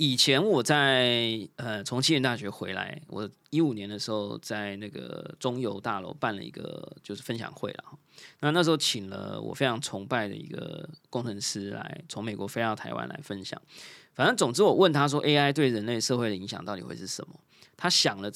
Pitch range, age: 120-175 Hz, 20-39